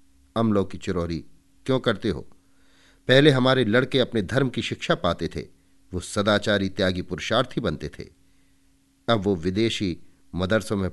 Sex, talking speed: male, 145 wpm